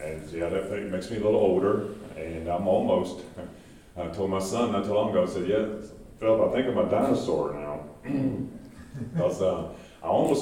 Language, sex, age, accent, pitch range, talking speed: English, male, 40-59, American, 85-110 Hz, 185 wpm